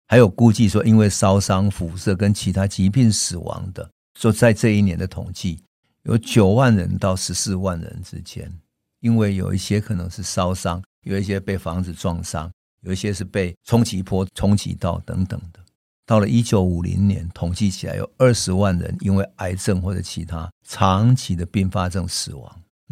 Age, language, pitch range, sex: 50-69, Chinese, 90-105 Hz, male